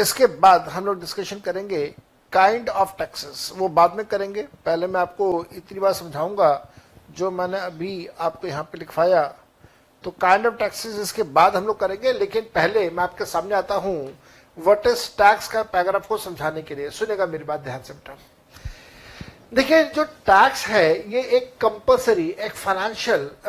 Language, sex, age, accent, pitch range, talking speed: Hindi, male, 60-79, native, 180-225 Hz, 160 wpm